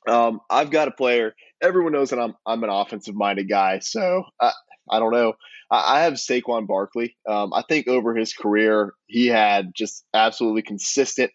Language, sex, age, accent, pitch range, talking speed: English, male, 20-39, American, 100-120 Hz, 185 wpm